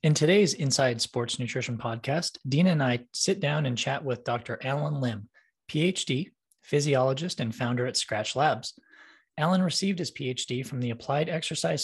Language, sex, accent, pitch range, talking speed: English, male, American, 125-155 Hz, 160 wpm